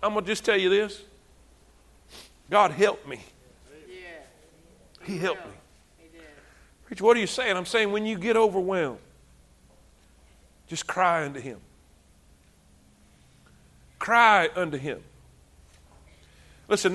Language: English